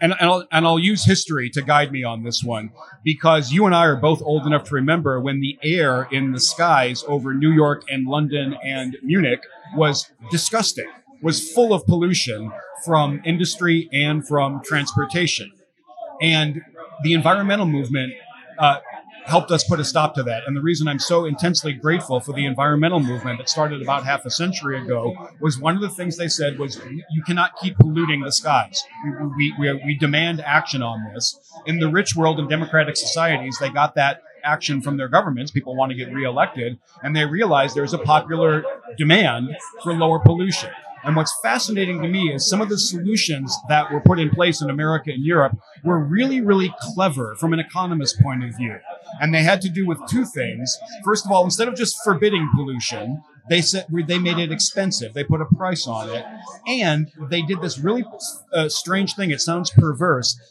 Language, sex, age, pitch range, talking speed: English, male, 40-59, 140-175 Hz, 190 wpm